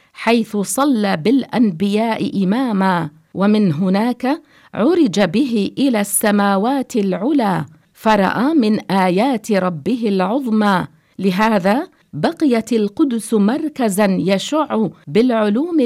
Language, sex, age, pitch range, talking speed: English, female, 50-69, 195-255 Hz, 85 wpm